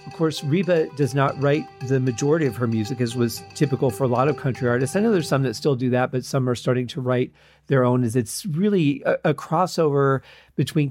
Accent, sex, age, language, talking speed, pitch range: American, male, 40-59, English, 235 wpm, 125-150 Hz